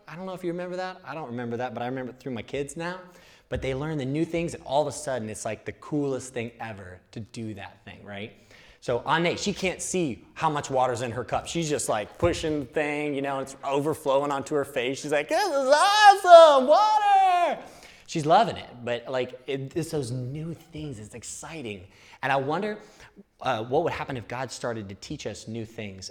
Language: English